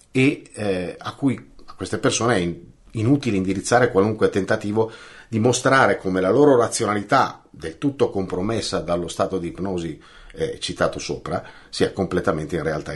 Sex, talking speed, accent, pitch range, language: male, 150 wpm, native, 95-145 Hz, Italian